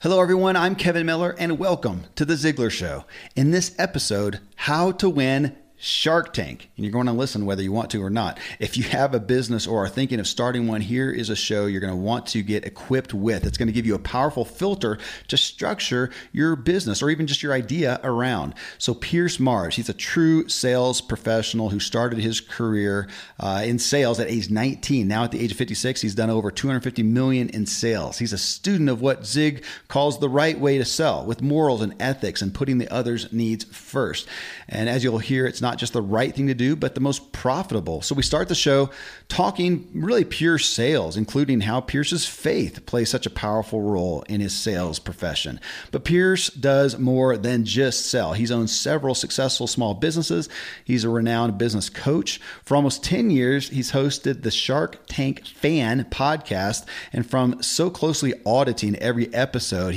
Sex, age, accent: male, 40-59, American